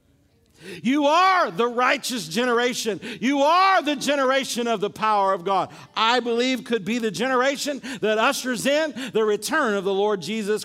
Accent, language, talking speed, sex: American, English, 165 wpm, male